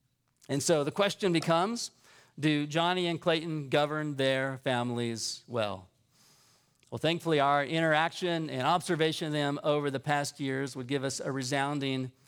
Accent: American